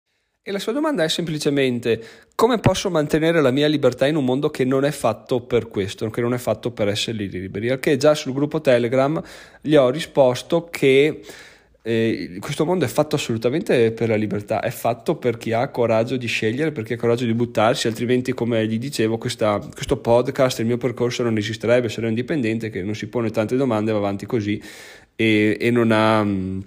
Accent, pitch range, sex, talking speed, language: native, 105-125 Hz, male, 195 wpm, Italian